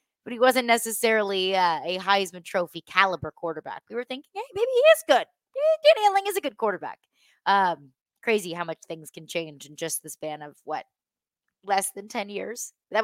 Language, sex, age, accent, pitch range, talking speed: English, female, 20-39, American, 170-235 Hz, 195 wpm